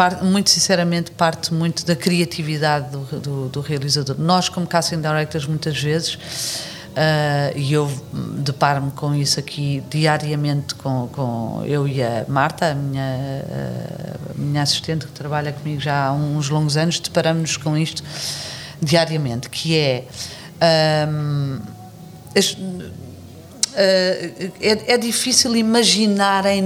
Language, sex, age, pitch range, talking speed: Portuguese, female, 40-59, 145-175 Hz, 120 wpm